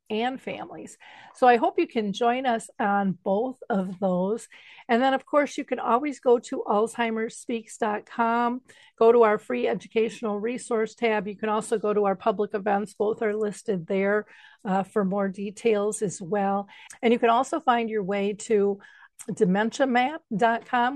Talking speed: 165 wpm